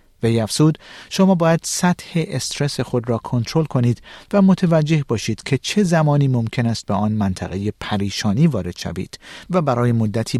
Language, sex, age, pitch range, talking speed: Persian, male, 50-69, 110-145 Hz, 155 wpm